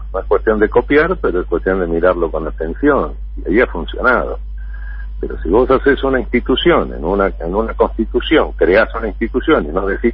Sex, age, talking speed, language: male, 50-69, 195 wpm, Spanish